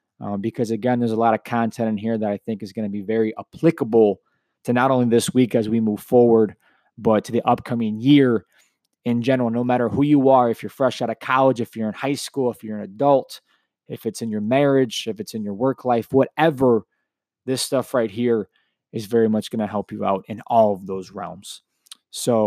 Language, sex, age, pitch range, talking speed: English, male, 20-39, 115-145 Hz, 225 wpm